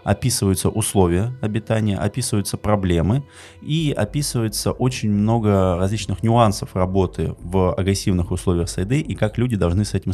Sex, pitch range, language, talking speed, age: male, 90-110 Hz, Russian, 130 wpm, 20-39